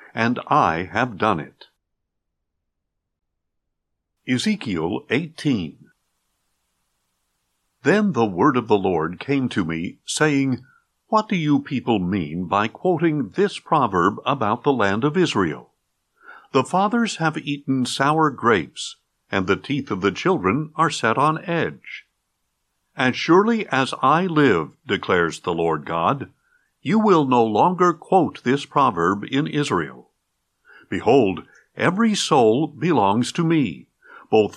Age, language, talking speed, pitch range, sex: 60-79, English, 125 wpm, 110-170 Hz, male